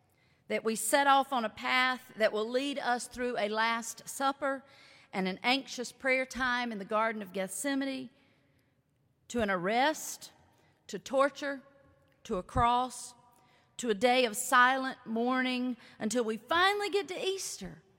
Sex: female